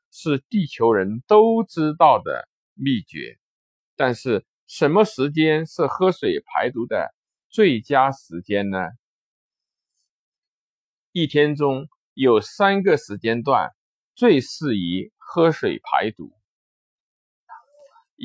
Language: Chinese